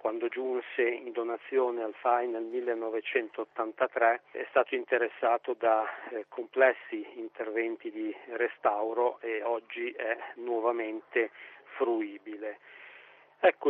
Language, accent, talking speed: Italian, native, 100 wpm